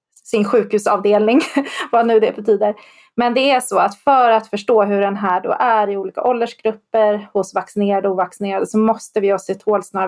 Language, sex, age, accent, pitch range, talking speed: Swedish, female, 30-49, native, 200-230 Hz, 195 wpm